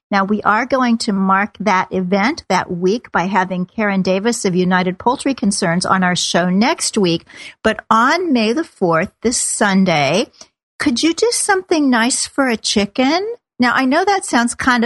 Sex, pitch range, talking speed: female, 200-270 Hz, 180 wpm